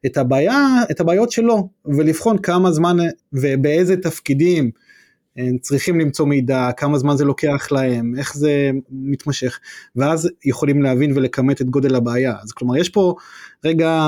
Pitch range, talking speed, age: 135-170 Hz, 140 wpm, 20-39